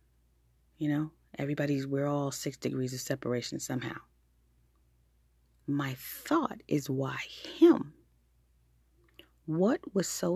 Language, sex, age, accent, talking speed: English, female, 30-49, American, 105 wpm